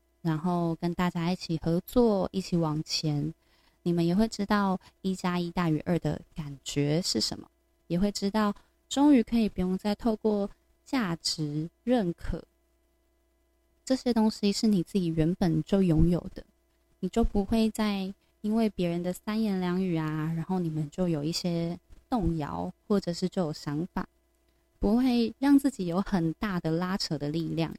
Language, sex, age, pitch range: Chinese, female, 20-39, 170-230 Hz